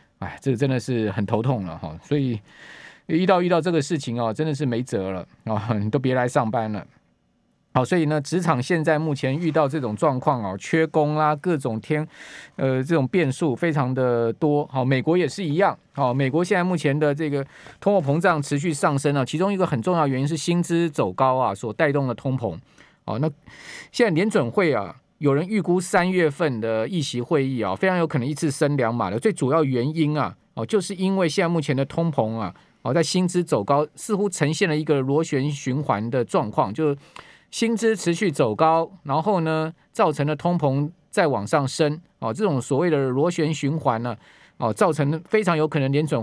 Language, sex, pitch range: Chinese, male, 130-165 Hz